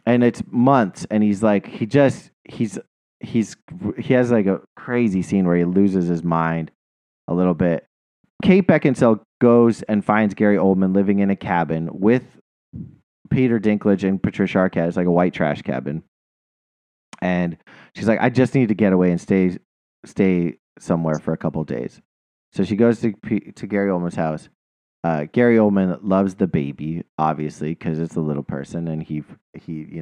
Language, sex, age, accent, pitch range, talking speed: English, male, 30-49, American, 80-110 Hz, 180 wpm